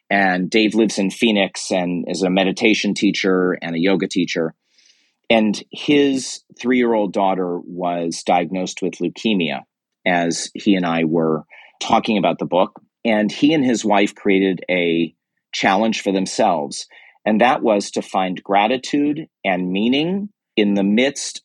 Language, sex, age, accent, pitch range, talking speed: English, male, 40-59, American, 95-110 Hz, 150 wpm